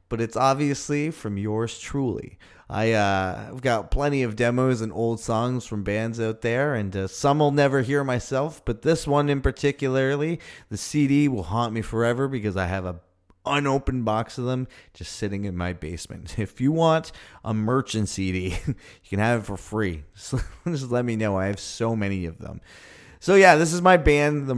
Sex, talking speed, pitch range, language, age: male, 195 wpm, 100-135 Hz, English, 30-49